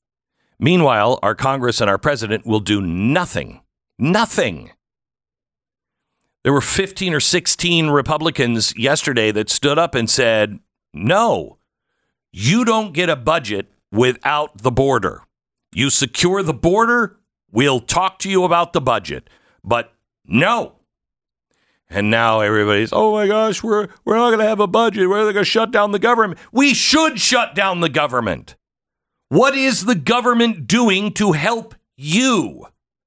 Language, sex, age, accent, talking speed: English, male, 60-79, American, 145 wpm